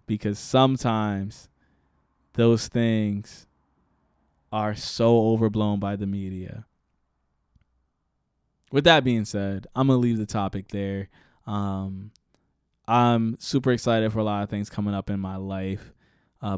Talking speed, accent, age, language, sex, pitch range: 125 wpm, American, 20-39, English, male, 100-115 Hz